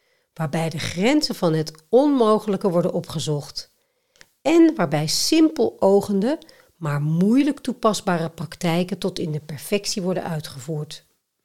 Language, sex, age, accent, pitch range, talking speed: Dutch, female, 60-79, Dutch, 160-225 Hz, 115 wpm